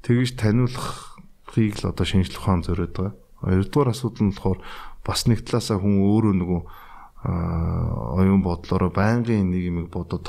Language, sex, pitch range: Korean, male, 90-110 Hz